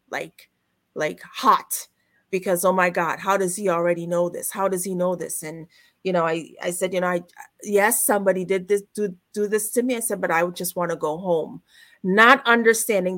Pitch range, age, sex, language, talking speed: 175-215 Hz, 30-49, female, English, 225 wpm